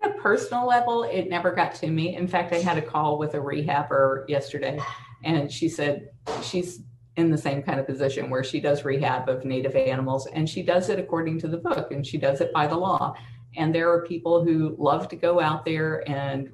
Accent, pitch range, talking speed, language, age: American, 135-165 Hz, 225 wpm, English, 50-69